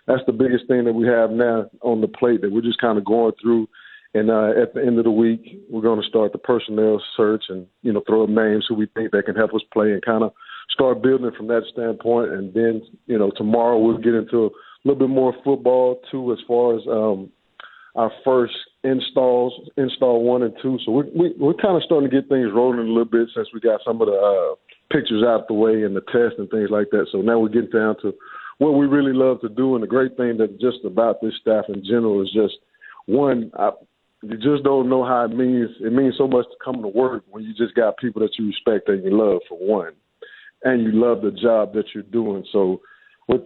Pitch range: 110-130 Hz